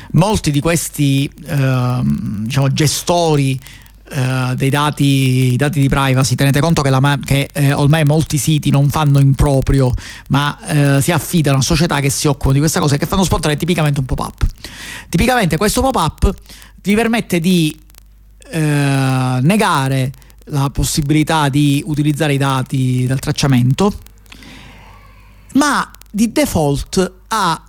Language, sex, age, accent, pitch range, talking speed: Italian, male, 40-59, native, 135-175 Hz, 135 wpm